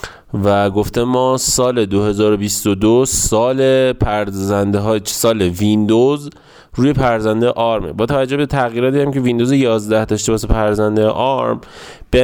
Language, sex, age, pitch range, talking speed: Persian, male, 20-39, 105-135 Hz, 125 wpm